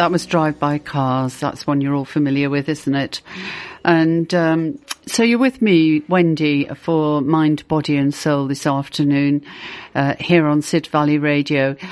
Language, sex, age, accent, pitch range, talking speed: English, female, 50-69, British, 140-175 Hz, 155 wpm